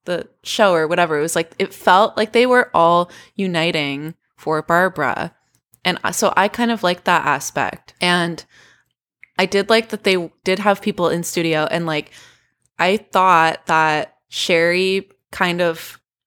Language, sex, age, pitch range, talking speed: English, female, 20-39, 160-190 Hz, 160 wpm